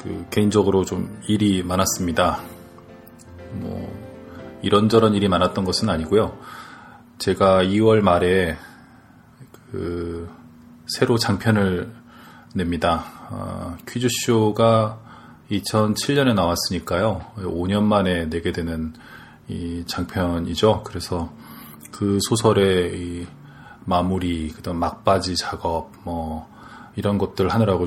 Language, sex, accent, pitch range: Korean, male, native, 90-115 Hz